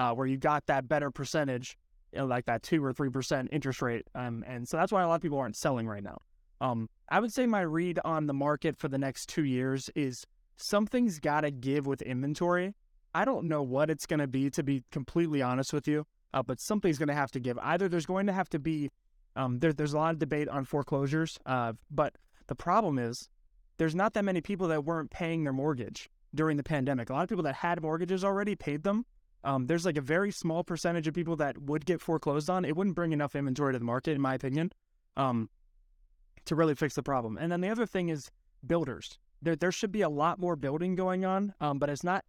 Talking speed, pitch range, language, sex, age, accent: 235 wpm, 135-175 Hz, English, male, 20-39, American